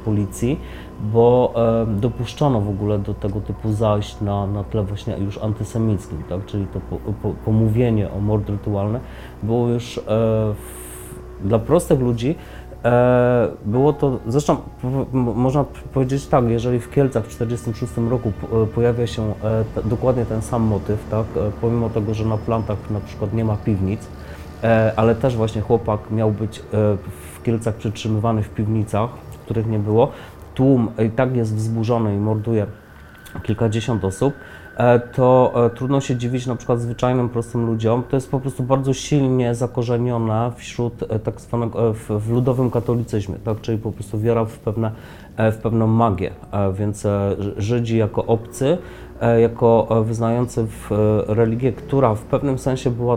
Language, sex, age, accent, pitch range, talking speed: Polish, male, 30-49, native, 105-120 Hz, 140 wpm